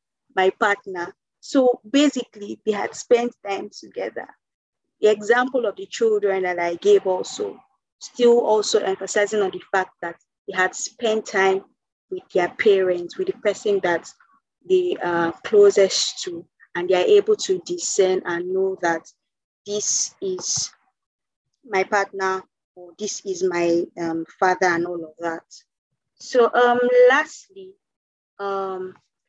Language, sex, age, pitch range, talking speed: English, female, 20-39, 195-270 Hz, 140 wpm